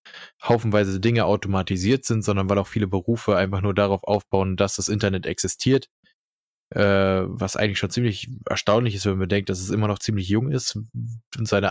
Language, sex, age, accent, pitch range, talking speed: German, male, 20-39, German, 100-115 Hz, 185 wpm